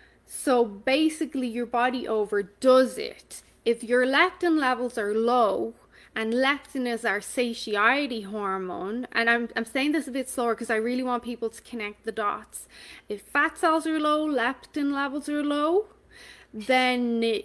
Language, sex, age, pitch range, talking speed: English, female, 20-39, 230-290 Hz, 155 wpm